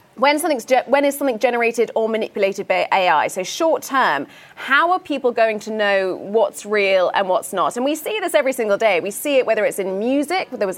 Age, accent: 20-39, British